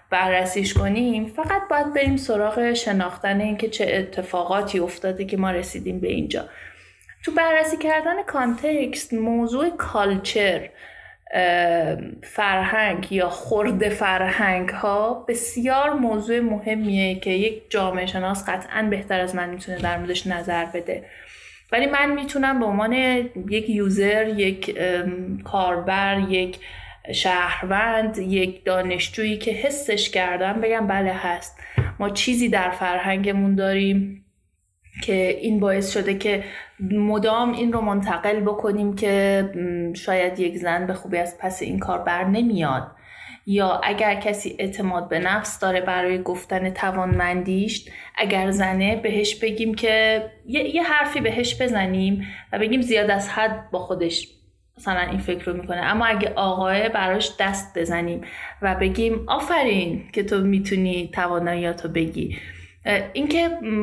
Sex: female